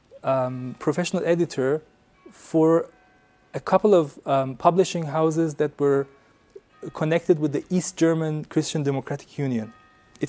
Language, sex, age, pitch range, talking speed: English, male, 30-49, 135-165 Hz, 120 wpm